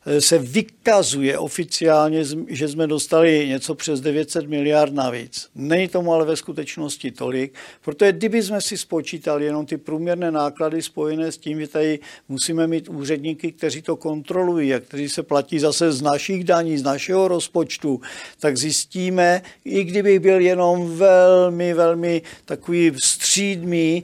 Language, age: Czech, 50-69